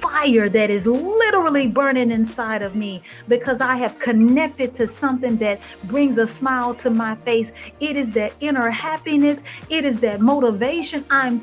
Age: 40-59